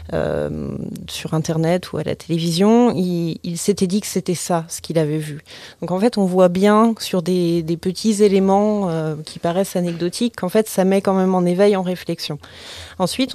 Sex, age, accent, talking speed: female, 20-39, French, 200 wpm